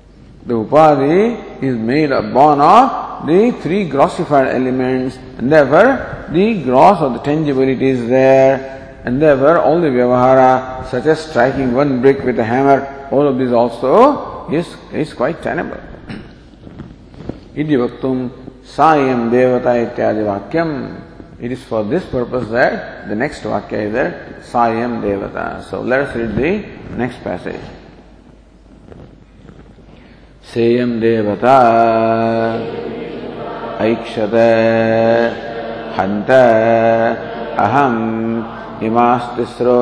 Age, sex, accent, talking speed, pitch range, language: 50-69, male, Indian, 100 wpm, 115-130 Hz, English